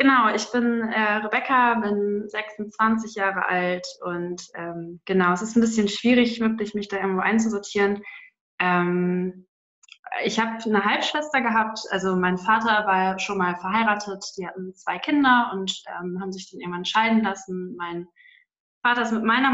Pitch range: 185-225 Hz